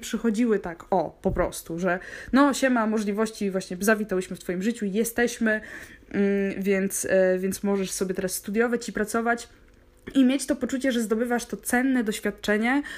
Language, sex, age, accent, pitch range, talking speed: Polish, female, 20-39, native, 200-235 Hz, 150 wpm